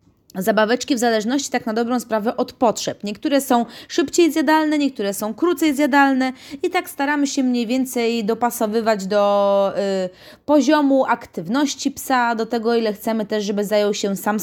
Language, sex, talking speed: Polish, female, 160 wpm